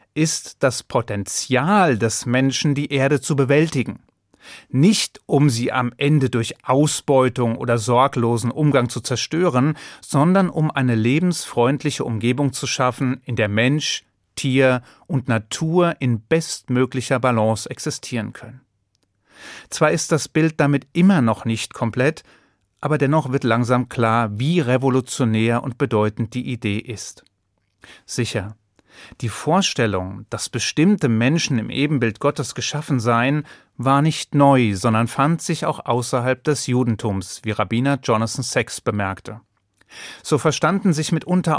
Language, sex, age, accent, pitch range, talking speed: German, male, 30-49, German, 115-150 Hz, 130 wpm